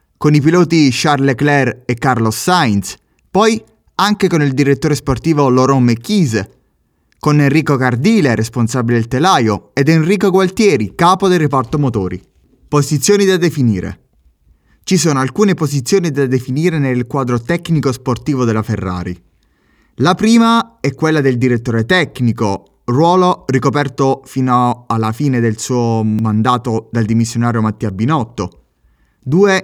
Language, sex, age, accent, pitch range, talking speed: Italian, male, 20-39, native, 115-150 Hz, 130 wpm